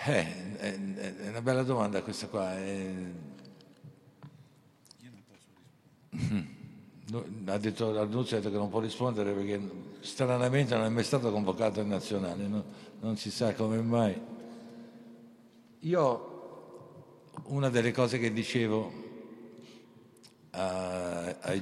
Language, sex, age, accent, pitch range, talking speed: Italian, male, 60-79, native, 100-120 Hz, 100 wpm